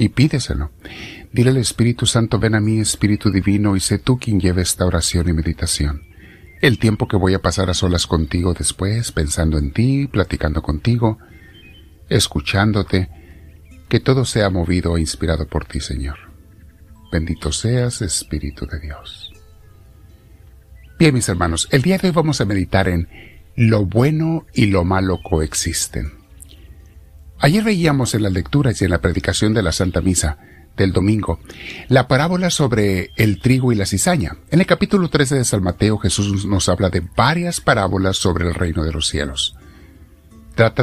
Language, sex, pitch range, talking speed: Spanish, male, 85-115 Hz, 160 wpm